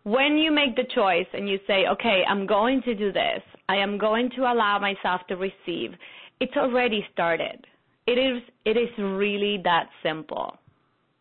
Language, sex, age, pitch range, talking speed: English, female, 30-49, 190-255 Hz, 170 wpm